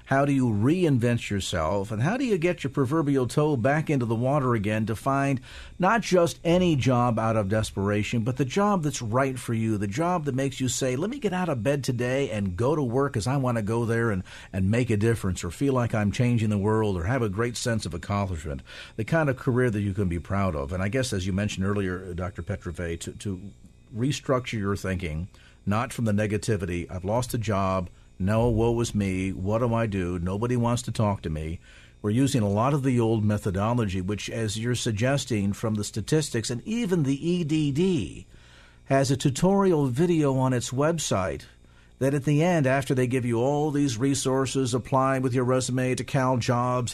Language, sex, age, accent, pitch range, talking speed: English, male, 50-69, American, 105-135 Hz, 210 wpm